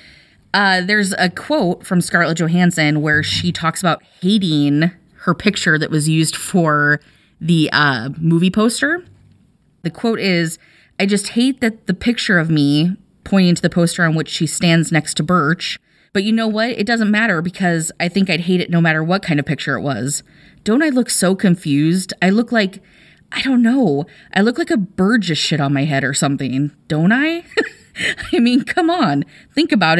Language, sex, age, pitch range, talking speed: English, female, 20-39, 155-215 Hz, 190 wpm